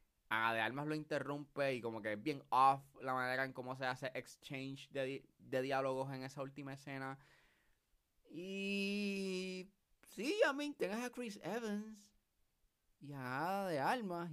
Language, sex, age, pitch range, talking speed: Spanish, male, 20-39, 115-165 Hz, 165 wpm